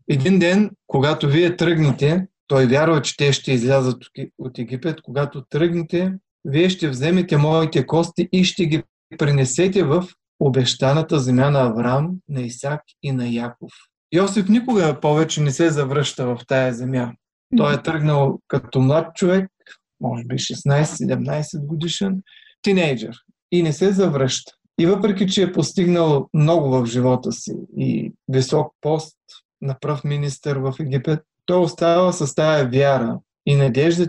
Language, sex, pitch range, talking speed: Bulgarian, male, 135-170 Hz, 145 wpm